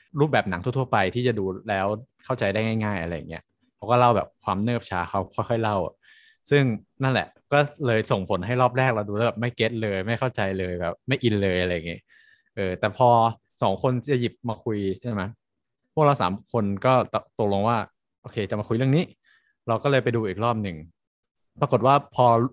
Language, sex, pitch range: Thai, male, 100-130 Hz